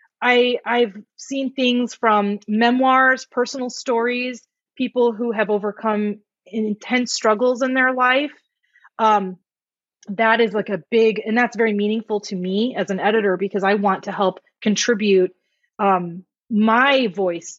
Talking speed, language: 135 wpm, English